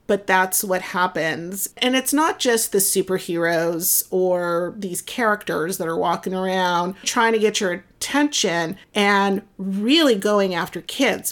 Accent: American